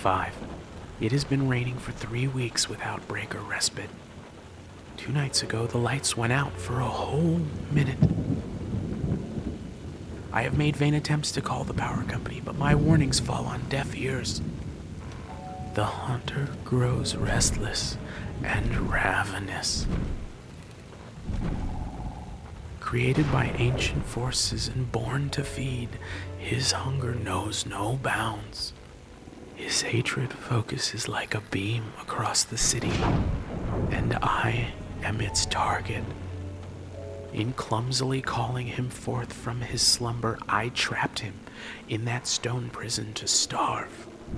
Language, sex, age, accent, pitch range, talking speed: English, male, 40-59, American, 100-130 Hz, 120 wpm